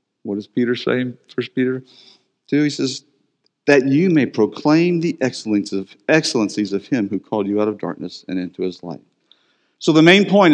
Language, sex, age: English, male, 50-69